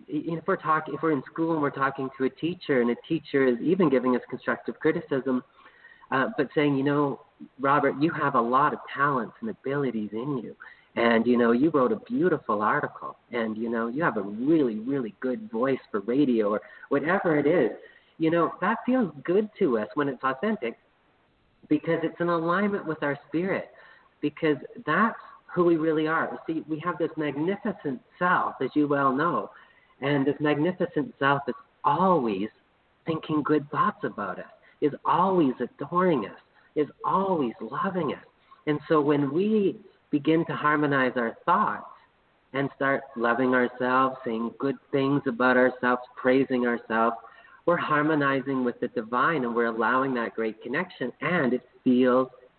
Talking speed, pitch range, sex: 170 wpm, 125-160 Hz, male